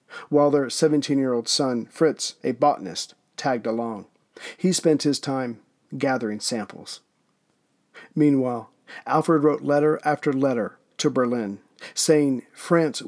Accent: American